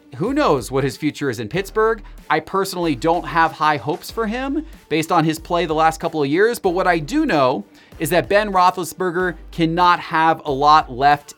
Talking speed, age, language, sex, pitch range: 205 wpm, 30-49, English, male, 135-170 Hz